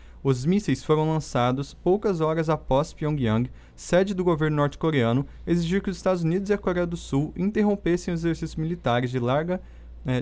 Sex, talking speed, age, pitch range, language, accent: male, 170 wpm, 20-39, 130-170 Hz, Portuguese, Brazilian